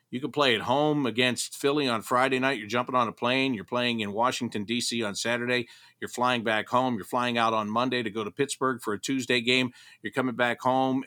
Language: English